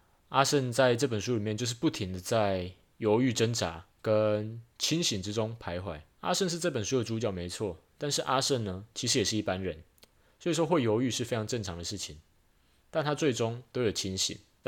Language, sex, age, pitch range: Chinese, male, 20-39, 95-130 Hz